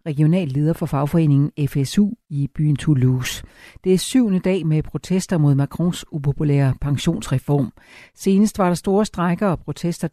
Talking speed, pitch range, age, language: 150 wpm, 145-185 Hz, 60-79, Danish